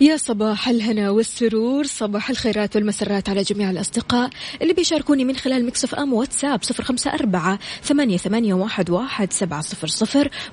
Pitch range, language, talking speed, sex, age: 185-235 Hz, Arabic, 115 wpm, female, 20-39